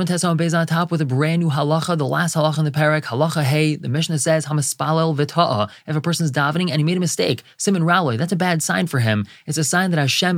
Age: 20-39